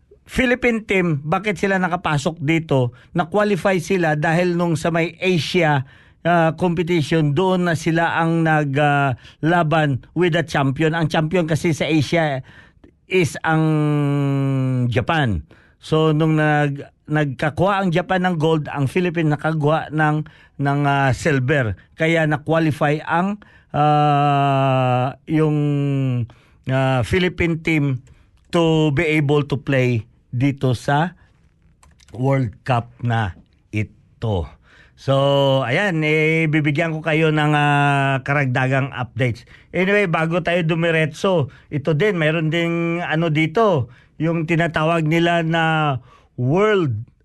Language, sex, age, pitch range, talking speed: Filipino, male, 50-69, 135-170 Hz, 115 wpm